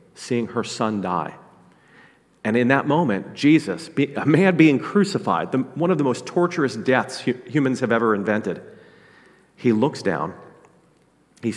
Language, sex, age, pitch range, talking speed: English, male, 40-59, 95-125 Hz, 140 wpm